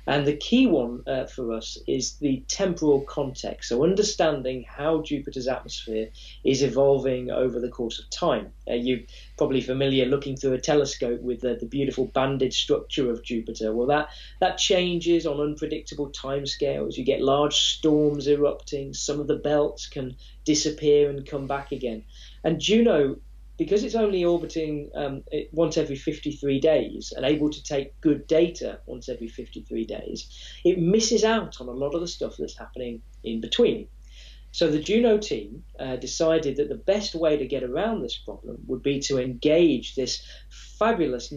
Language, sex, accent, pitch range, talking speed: English, male, British, 125-160 Hz, 170 wpm